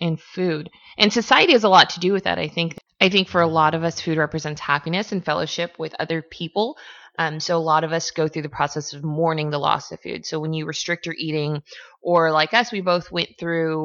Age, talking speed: 20-39, 245 wpm